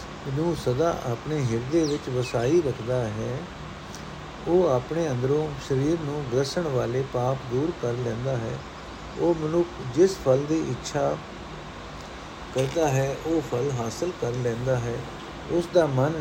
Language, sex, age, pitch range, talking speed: Punjabi, male, 60-79, 125-155 Hz, 135 wpm